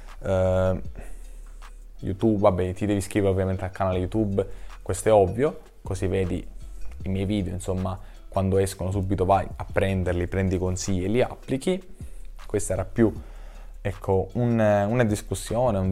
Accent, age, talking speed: native, 20-39, 140 wpm